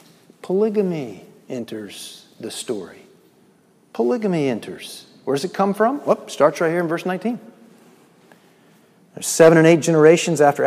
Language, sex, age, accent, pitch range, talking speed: English, male, 50-69, American, 135-195 Hz, 140 wpm